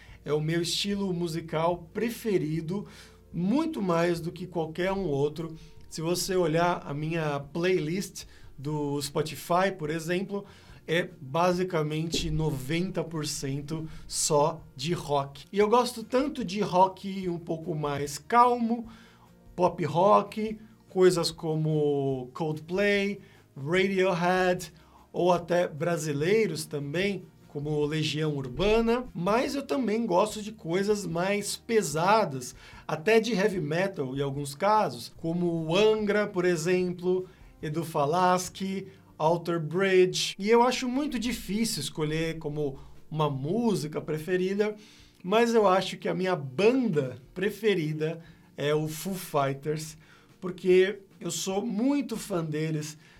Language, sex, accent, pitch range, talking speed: Portuguese, male, Brazilian, 155-195 Hz, 115 wpm